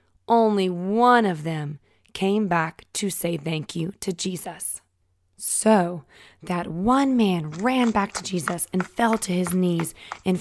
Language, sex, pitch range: English, female, 145-200 Hz